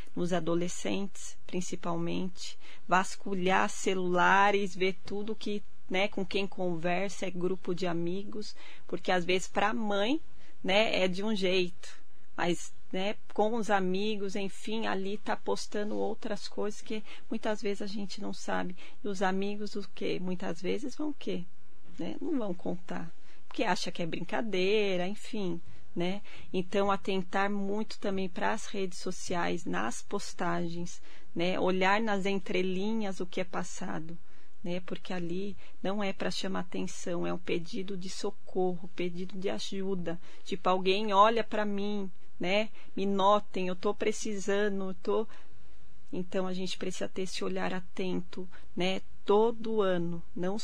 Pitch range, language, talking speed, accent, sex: 180-205 Hz, Portuguese, 145 wpm, Brazilian, female